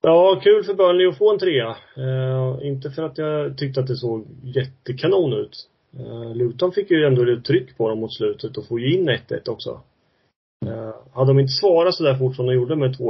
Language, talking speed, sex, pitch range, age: Swedish, 220 wpm, male, 115-140 Hz, 30-49